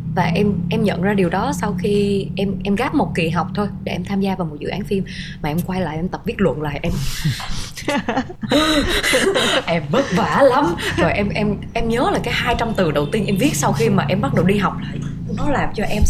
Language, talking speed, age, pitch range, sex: Vietnamese, 250 wpm, 20-39, 160-210 Hz, female